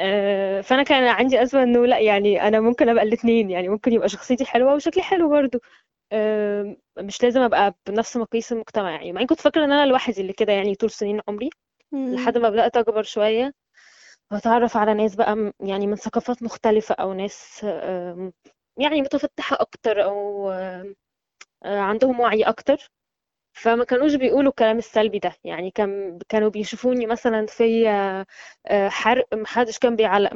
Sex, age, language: female, 10-29, Arabic